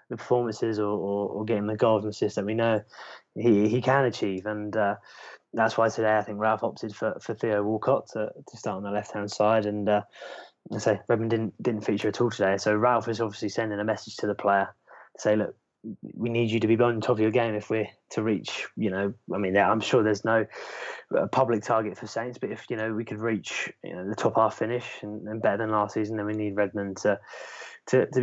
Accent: British